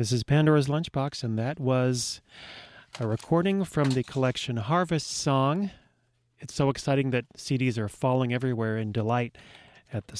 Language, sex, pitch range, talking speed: English, male, 125-155 Hz, 155 wpm